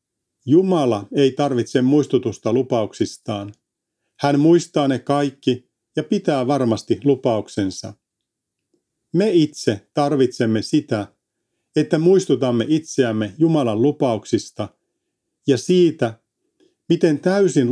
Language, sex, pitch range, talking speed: Finnish, male, 115-160 Hz, 90 wpm